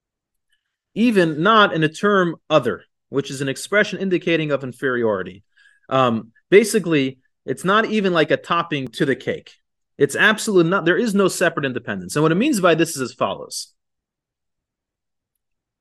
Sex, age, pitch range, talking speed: male, 30-49, 135-185 Hz, 160 wpm